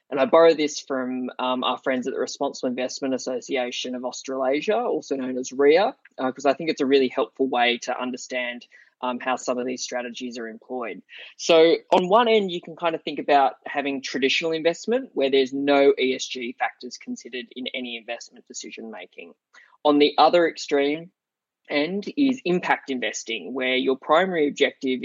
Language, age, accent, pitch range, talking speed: English, 20-39, Australian, 130-160 Hz, 175 wpm